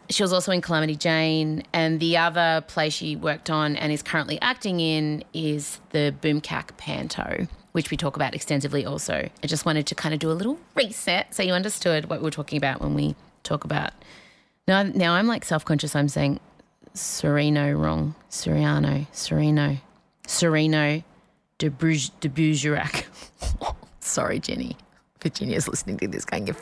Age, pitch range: 30-49, 150-195 Hz